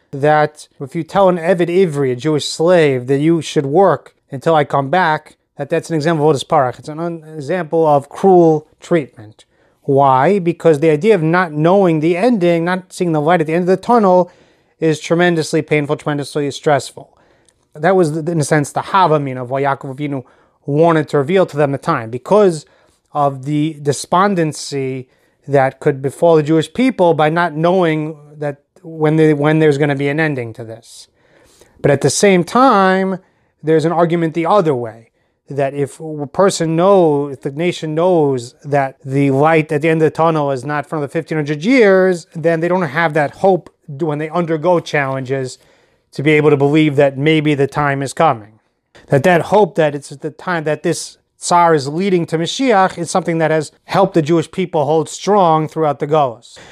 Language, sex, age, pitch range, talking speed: English, male, 30-49, 145-170 Hz, 195 wpm